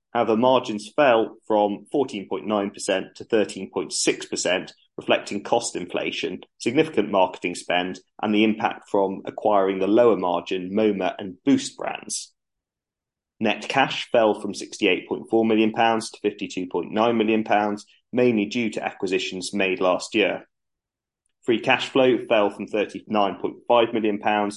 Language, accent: English, British